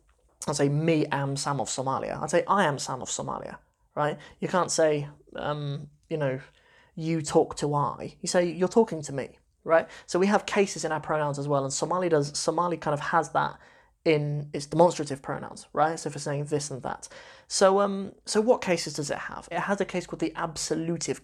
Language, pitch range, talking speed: English, 150-180 Hz, 210 wpm